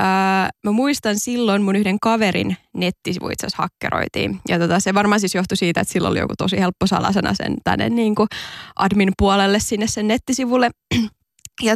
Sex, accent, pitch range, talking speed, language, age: female, native, 190-220 Hz, 170 wpm, Finnish, 20-39